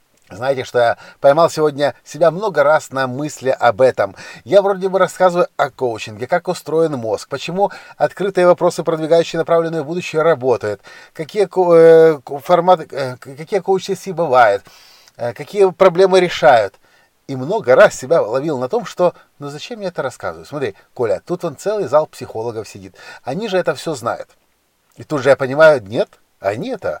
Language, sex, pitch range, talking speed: Russian, male, 125-175 Hz, 160 wpm